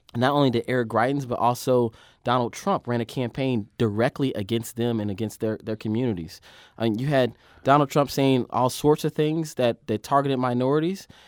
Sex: male